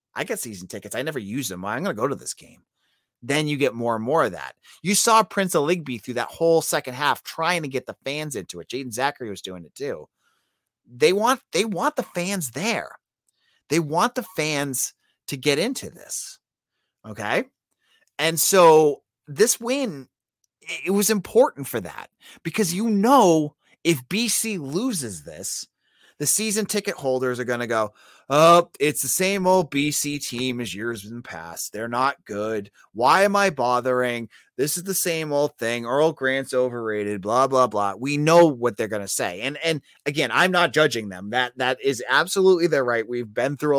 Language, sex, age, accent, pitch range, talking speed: English, male, 30-49, American, 125-175 Hz, 190 wpm